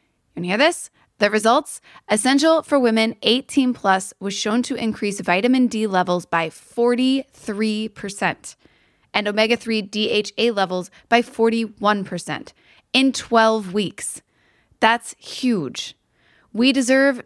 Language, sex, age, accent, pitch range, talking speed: English, female, 20-39, American, 185-240 Hz, 110 wpm